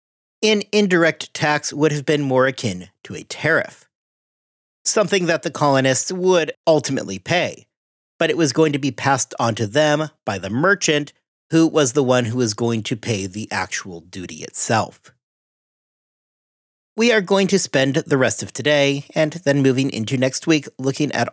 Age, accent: 40-59, American